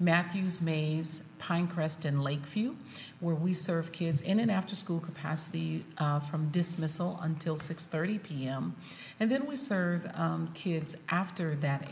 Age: 40-59